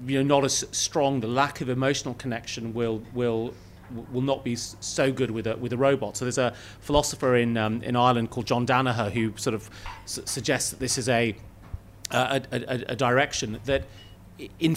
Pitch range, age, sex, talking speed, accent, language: 105-130 Hz, 30-49, male, 195 wpm, British, English